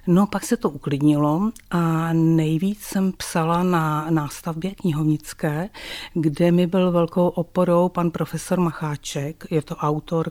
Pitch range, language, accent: 150-170 Hz, Czech, native